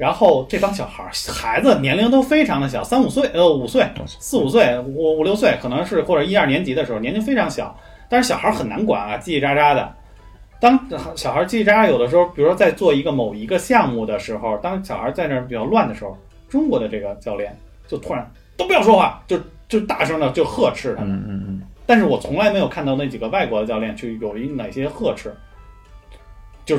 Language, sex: Chinese, male